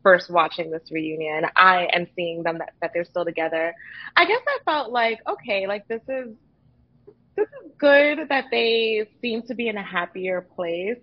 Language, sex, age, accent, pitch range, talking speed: English, female, 20-39, American, 170-210 Hz, 185 wpm